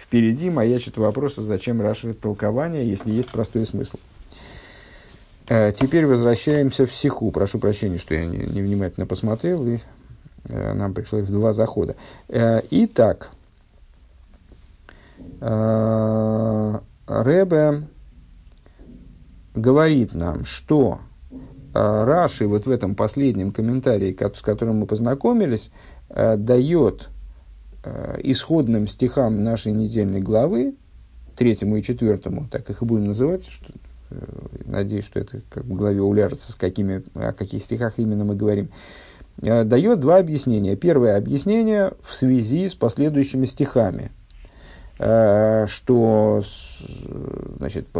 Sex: male